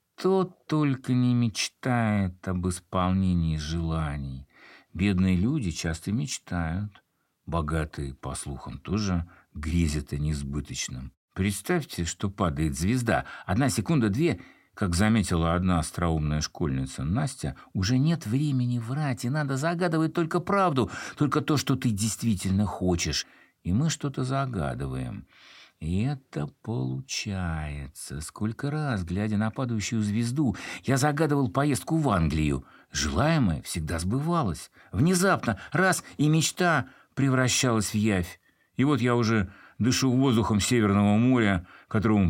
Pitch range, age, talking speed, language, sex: 85-130 Hz, 60-79, 115 wpm, Russian, male